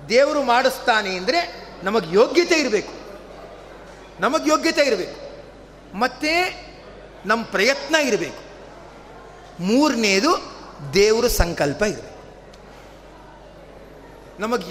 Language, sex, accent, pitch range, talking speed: Kannada, male, native, 230-310 Hz, 75 wpm